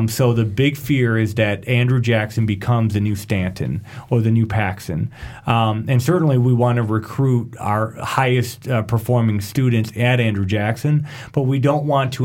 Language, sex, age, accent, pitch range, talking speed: English, male, 40-59, American, 110-125 Hz, 175 wpm